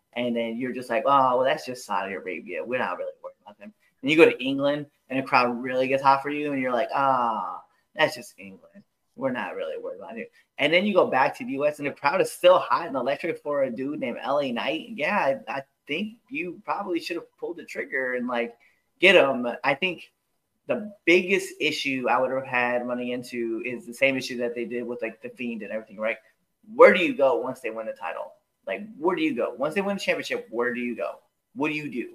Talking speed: 250 wpm